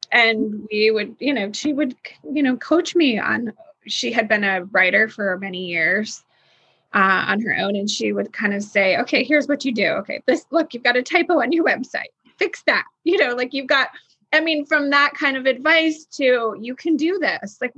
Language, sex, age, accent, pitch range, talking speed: English, female, 20-39, American, 200-260 Hz, 220 wpm